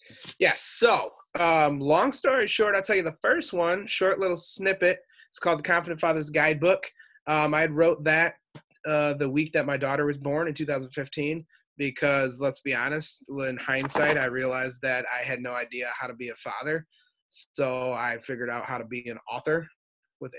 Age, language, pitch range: 30-49, English, 125-160 Hz